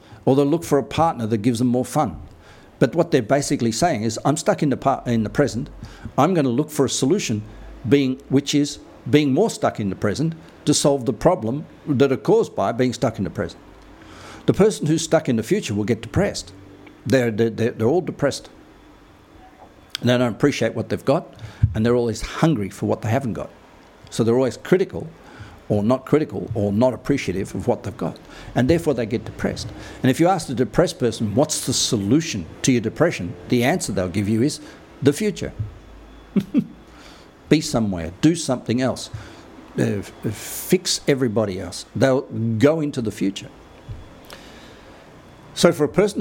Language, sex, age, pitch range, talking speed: English, male, 60-79, 110-140 Hz, 185 wpm